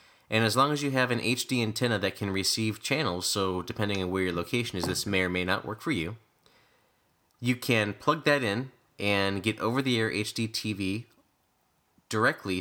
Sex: male